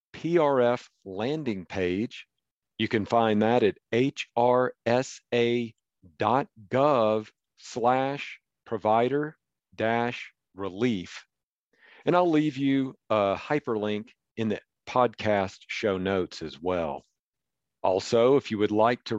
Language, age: English, 50-69